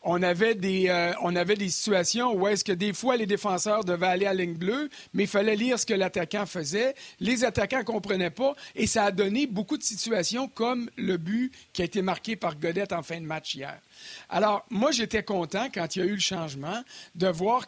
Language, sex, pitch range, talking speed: French, male, 175-220 Hz, 225 wpm